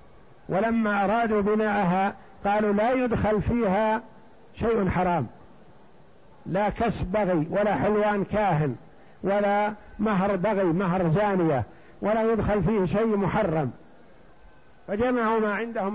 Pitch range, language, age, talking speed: 185-210 Hz, Arabic, 60-79, 105 wpm